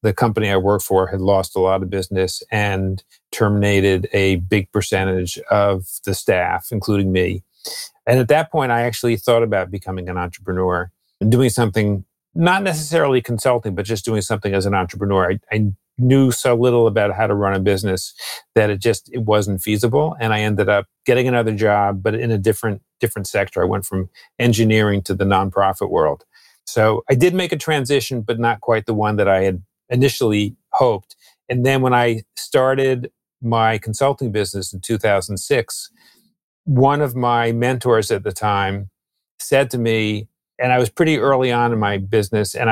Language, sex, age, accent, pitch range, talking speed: English, male, 40-59, American, 100-125 Hz, 180 wpm